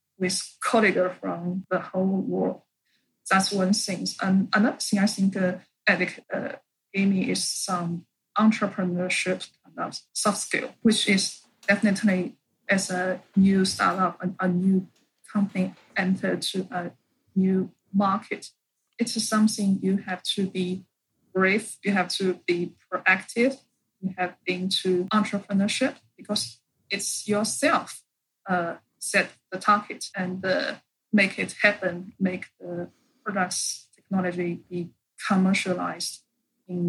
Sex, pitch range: female, 185-210 Hz